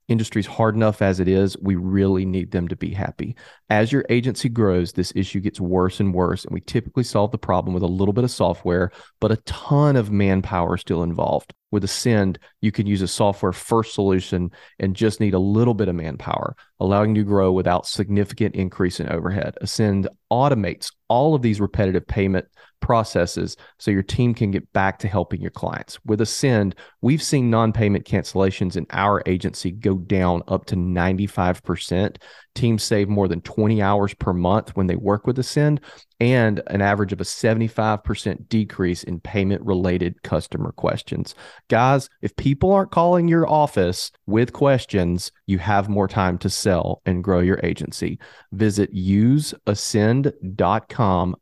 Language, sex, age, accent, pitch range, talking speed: English, male, 40-59, American, 95-110 Hz, 170 wpm